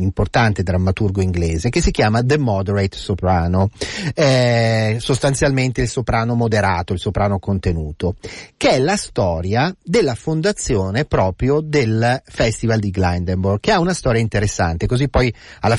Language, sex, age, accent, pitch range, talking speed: Italian, male, 30-49, native, 95-130 Hz, 135 wpm